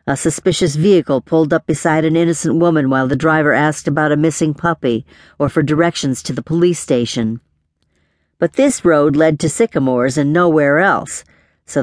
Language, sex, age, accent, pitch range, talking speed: English, female, 50-69, American, 135-175 Hz, 175 wpm